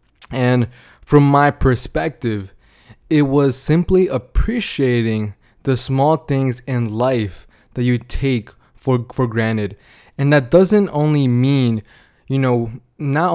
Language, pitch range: English, 125-150 Hz